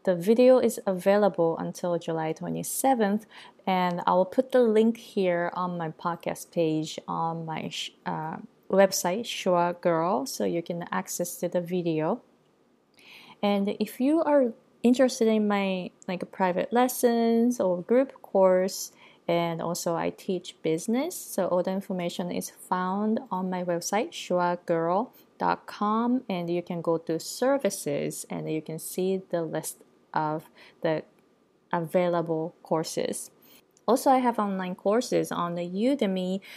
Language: Japanese